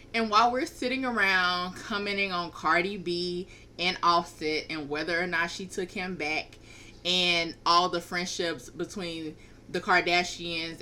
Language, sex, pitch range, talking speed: English, female, 170-225 Hz, 145 wpm